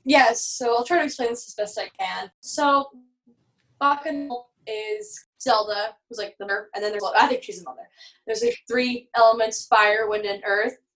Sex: female